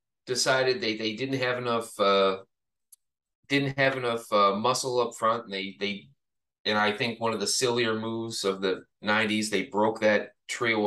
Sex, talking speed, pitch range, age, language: male, 175 wpm, 105-125 Hz, 30-49, English